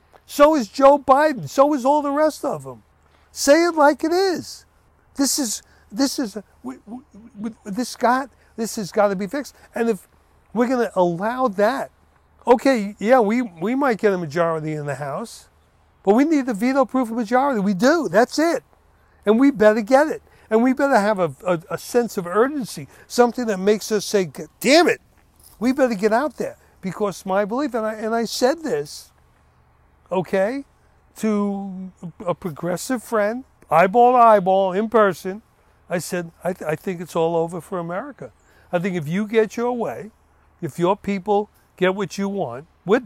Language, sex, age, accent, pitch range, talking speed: English, male, 60-79, American, 175-245 Hz, 185 wpm